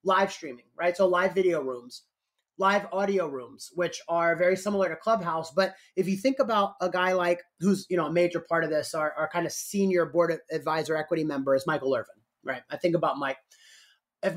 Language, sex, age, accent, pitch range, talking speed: English, male, 30-49, American, 170-200 Hz, 215 wpm